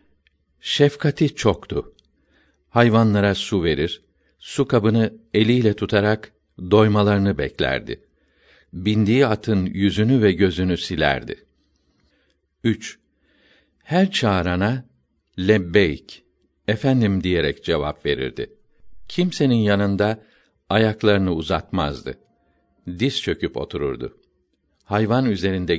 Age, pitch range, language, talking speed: 60-79, 90-120 Hz, Turkish, 80 wpm